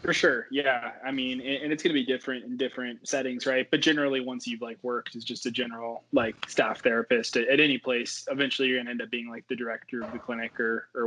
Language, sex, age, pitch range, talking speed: English, male, 20-39, 120-140 Hz, 260 wpm